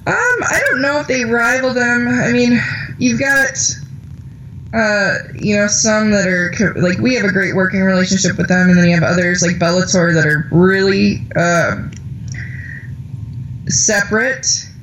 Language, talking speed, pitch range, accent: English, 160 wpm, 130-185 Hz, American